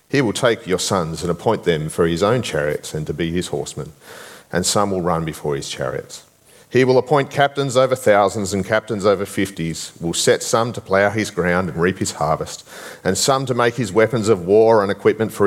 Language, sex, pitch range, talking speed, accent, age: English, male, 95-125 Hz, 215 wpm, Australian, 40-59